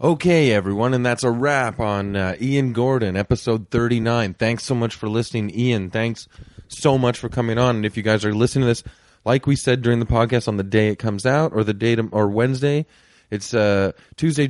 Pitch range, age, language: 110-125 Hz, 30-49, English